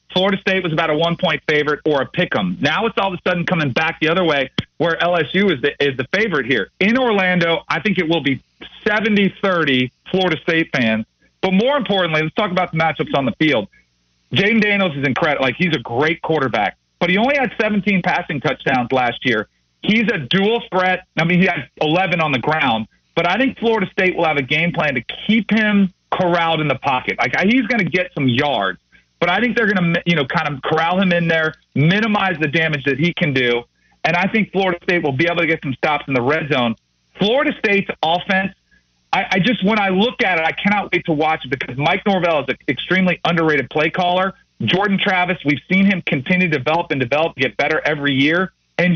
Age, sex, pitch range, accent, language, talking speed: 40-59, male, 150-190 Hz, American, English, 225 wpm